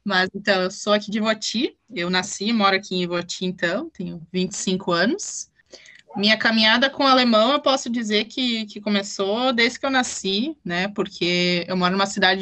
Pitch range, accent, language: 185-215 Hz, Brazilian, Portuguese